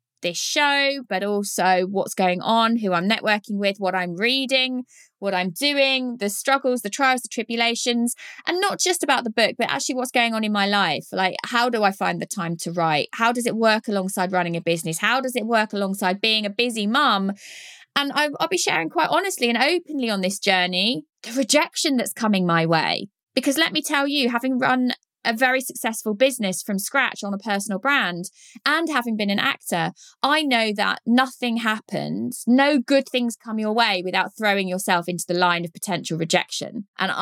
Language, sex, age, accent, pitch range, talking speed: English, female, 20-39, British, 190-260 Hz, 200 wpm